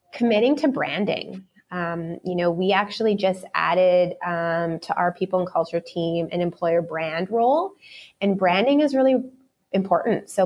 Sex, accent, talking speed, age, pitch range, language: female, American, 155 wpm, 20-39, 165-235 Hz, English